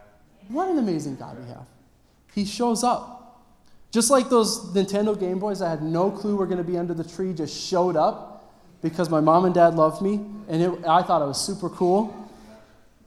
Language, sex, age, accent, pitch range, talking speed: English, male, 20-39, American, 135-205 Hz, 195 wpm